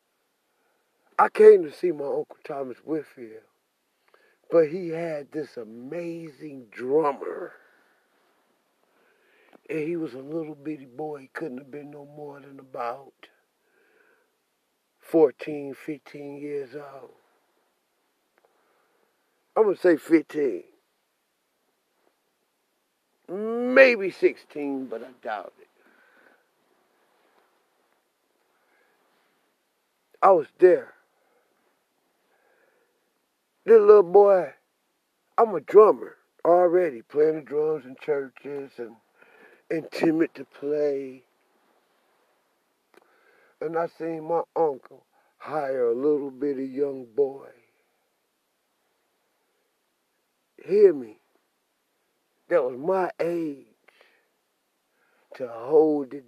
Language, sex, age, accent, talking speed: English, male, 50-69, American, 90 wpm